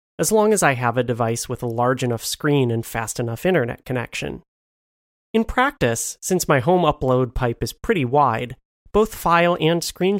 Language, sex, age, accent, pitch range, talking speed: English, male, 30-49, American, 120-155 Hz, 180 wpm